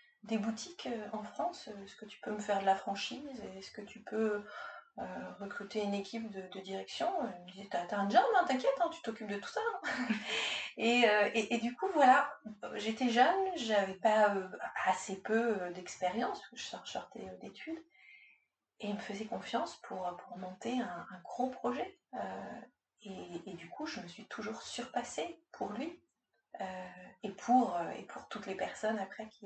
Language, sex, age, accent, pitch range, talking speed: French, female, 30-49, French, 195-255 Hz, 200 wpm